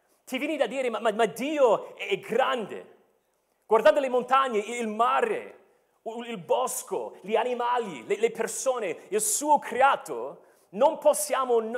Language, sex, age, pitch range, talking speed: Italian, male, 40-59, 225-330 Hz, 140 wpm